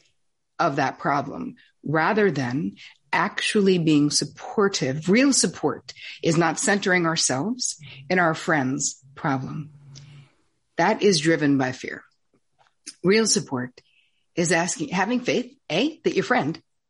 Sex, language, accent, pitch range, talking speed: female, English, American, 150-200 Hz, 115 wpm